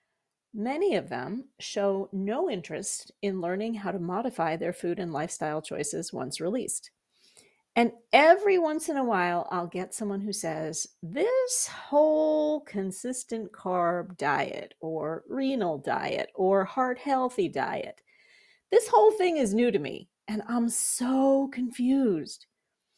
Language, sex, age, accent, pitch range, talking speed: English, female, 40-59, American, 185-270 Hz, 135 wpm